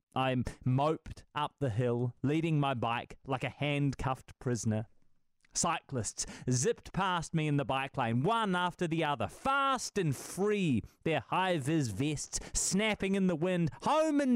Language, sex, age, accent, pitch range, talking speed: English, male, 30-49, Australian, 115-180 Hz, 150 wpm